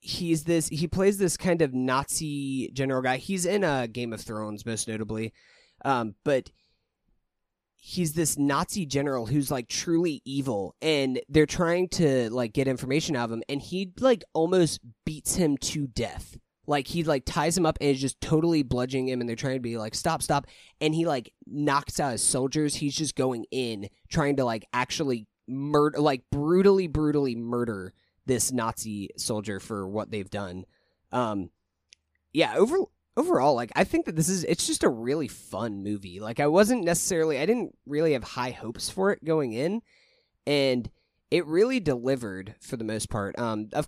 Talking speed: 180 wpm